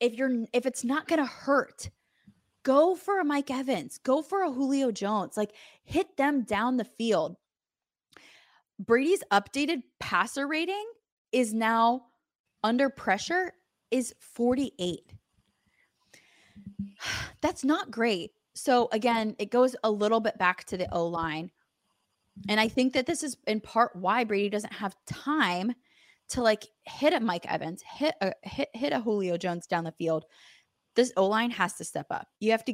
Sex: female